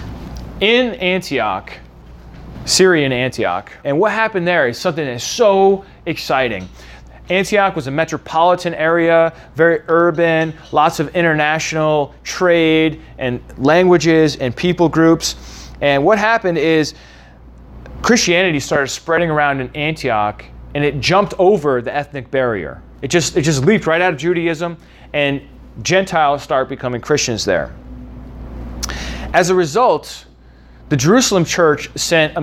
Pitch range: 130-180 Hz